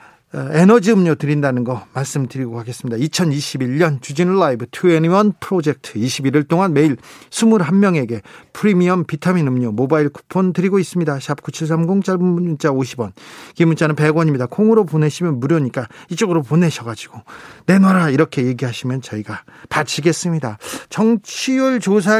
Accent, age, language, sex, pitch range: native, 40-59, Korean, male, 135-185 Hz